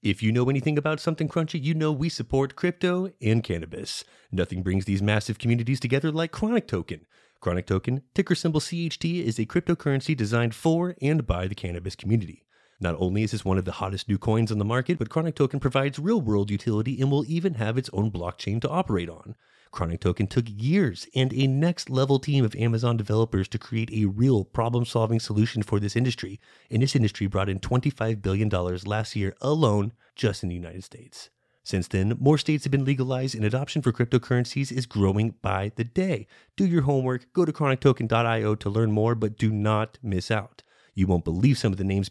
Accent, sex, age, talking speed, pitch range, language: American, male, 30-49, 200 wpm, 105-140 Hz, English